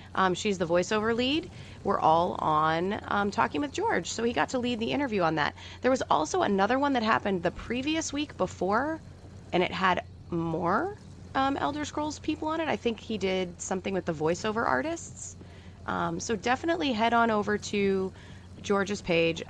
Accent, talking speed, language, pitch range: American, 185 wpm, English, 155-215 Hz